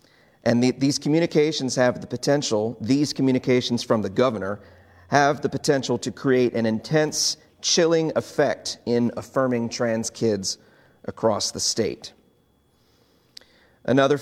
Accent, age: American, 40-59